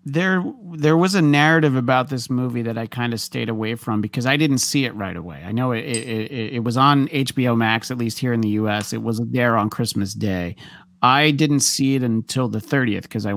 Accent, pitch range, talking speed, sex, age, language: American, 115-150 Hz, 240 wpm, male, 40-59, English